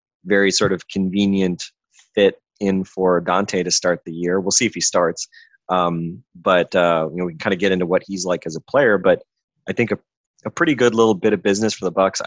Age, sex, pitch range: 20-39, male, 85-100 Hz